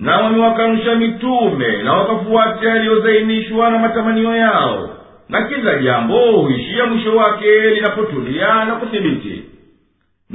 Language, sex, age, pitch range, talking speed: Swahili, male, 50-69, 215-230 Hz, 105 wpm